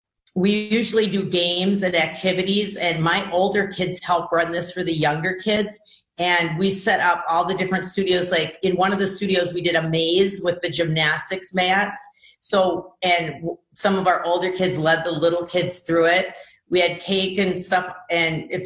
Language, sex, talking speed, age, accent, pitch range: English, female, 190 wpm, 40-59, American, 160-185 Hz